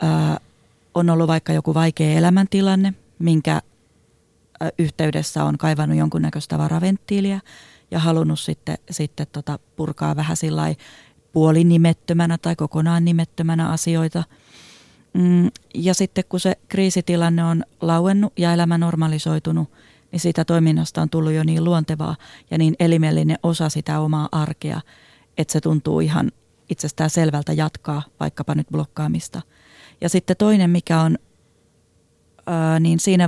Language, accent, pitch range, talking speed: Finnish, native, 155-175 Hz, 120 wpm